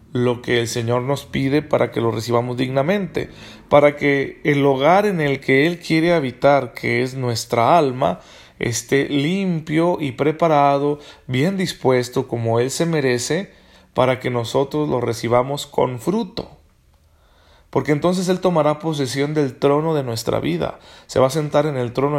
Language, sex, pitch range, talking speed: Spanish, male, 120-150 Hz, 160 wpm